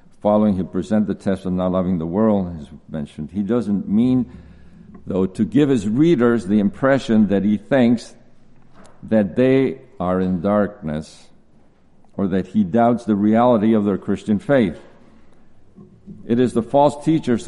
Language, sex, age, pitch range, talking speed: English, male, 60-79, 95-120 Hz, 155 wpm